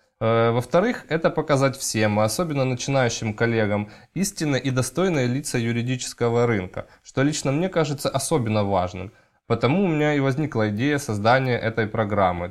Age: 20-39